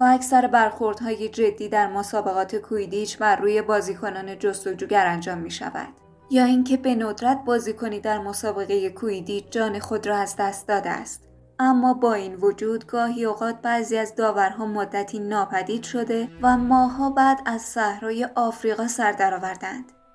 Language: Persian